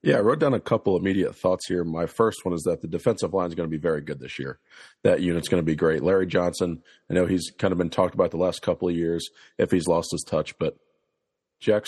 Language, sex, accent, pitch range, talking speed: English, male, American, 80-90 Hz, 275 wpm